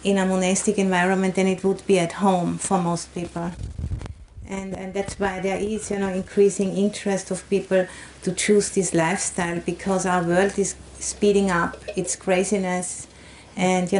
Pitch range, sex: 175-195 Hz, female